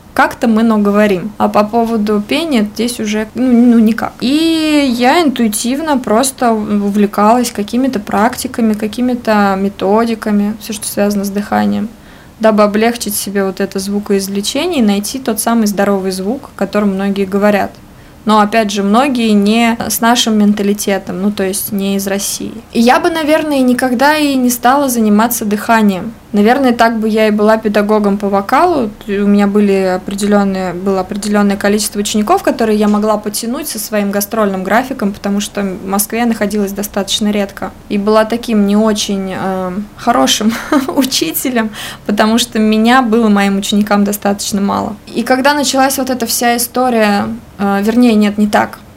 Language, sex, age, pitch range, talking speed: Russian, female, 20-39, 205-235 Hz, 150 wpm